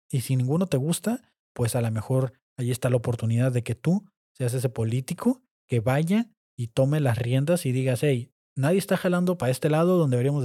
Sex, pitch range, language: male, 120-155 Hz, Spanish